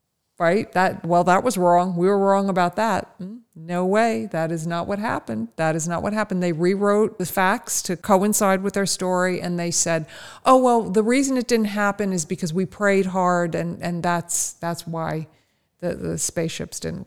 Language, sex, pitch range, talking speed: English, female, 170-205 Hz, 195 wpm